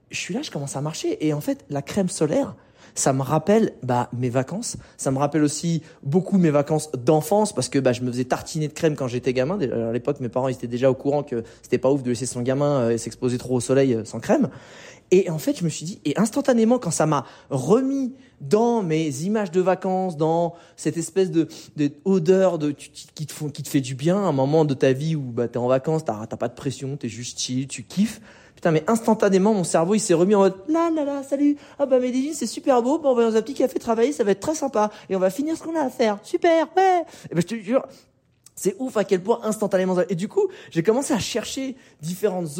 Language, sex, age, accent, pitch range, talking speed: French, male, 20-39, French, 140-215 Hz, 265 wpm